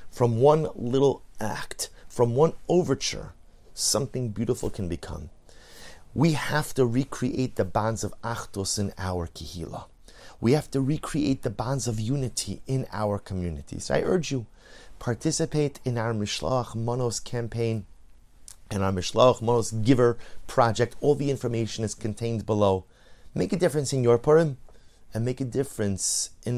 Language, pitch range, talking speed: English, 105-135 Hz, 150 wpm